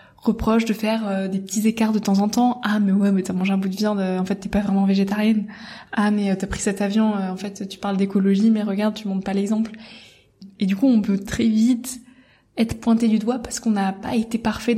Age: 20-39